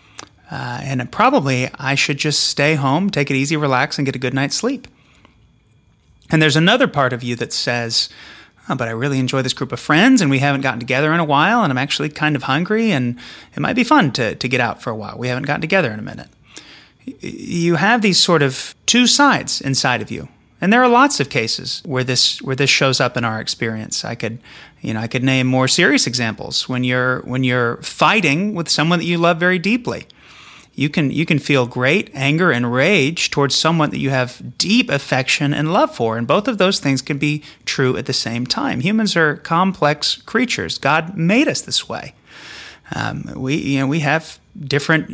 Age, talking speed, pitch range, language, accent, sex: 30-49, 215 wpm, 130-180 Hz, English, American, male